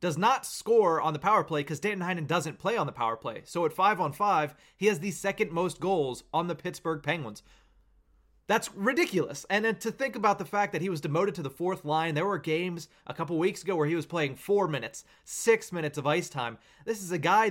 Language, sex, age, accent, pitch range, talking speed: English, male, 30-49, American, 145-185 Hz, 235 wpm